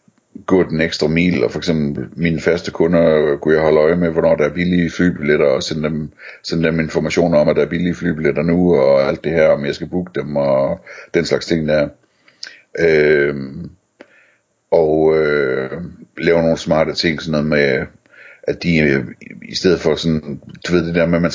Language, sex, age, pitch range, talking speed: Danish, male, 60-79, 75-90 Hz, 195 wpm